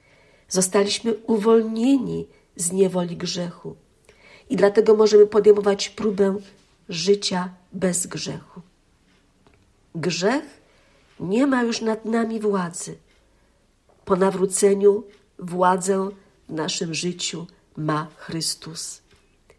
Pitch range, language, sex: 190-225 Hz, Polish, female